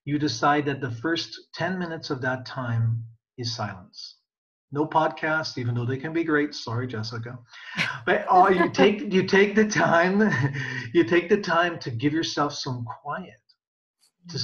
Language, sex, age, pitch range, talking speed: English, male, 40-59, 120-155 Hz, 165 wpm